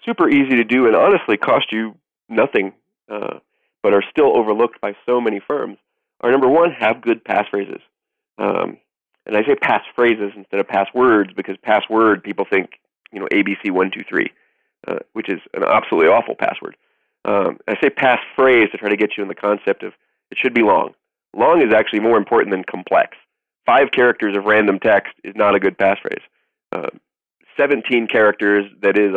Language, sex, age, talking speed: English, male, 30-49, 175 wpm